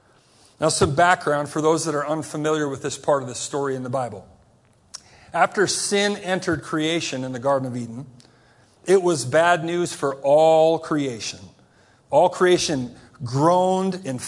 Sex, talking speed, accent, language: male, 155 wpm, American, English